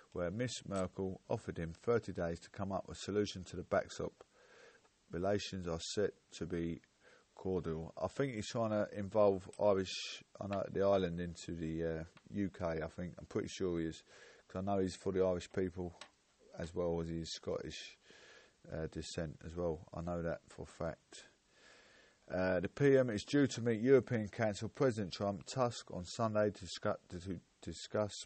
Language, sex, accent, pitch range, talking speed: English, male, British, 85-100 Hz, 180 wpm